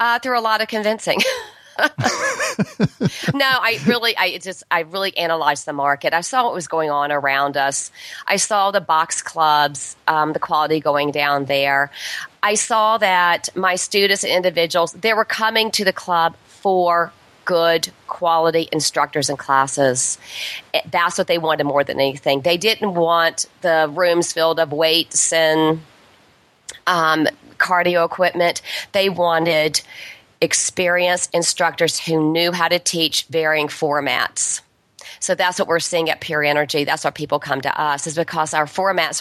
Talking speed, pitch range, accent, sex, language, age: 155 wpm, 150-175 Hz, American, female, English, 40-59